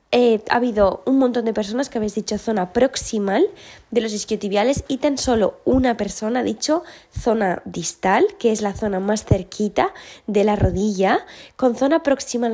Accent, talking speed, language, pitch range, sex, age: Spanish, 170 wpm, Spanish, 205-265 Hz, female, 20-39